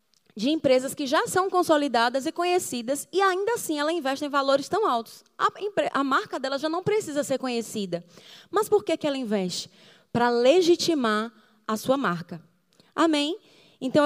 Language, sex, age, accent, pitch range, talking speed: Portuguese, female, 20-39, Brazilian, 225-305 Hz, 170 wpm